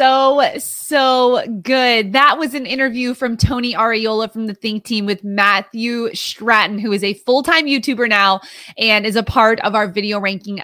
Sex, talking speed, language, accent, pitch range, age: female, 180 wpm, English, American, 205-255 Hz, 20-39